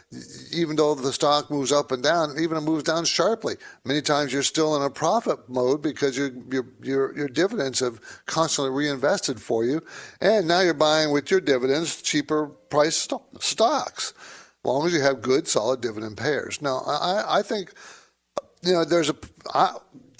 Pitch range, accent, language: 130-155 Hz, American, English